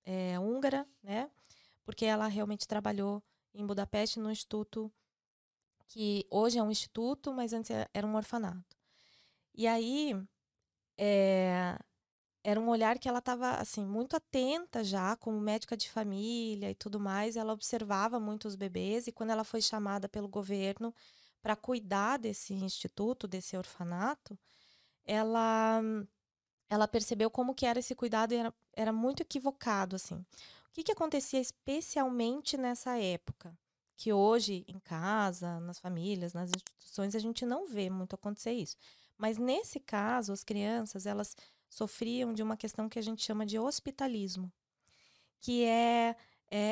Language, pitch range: Portuguese, 200-235 Hz